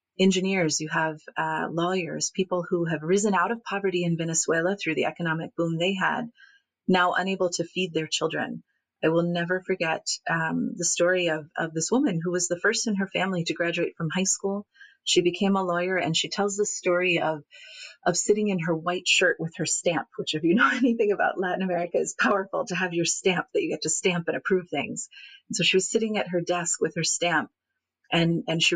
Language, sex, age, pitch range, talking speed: English, female, 30-49, 165-190 Hz, 215 wpm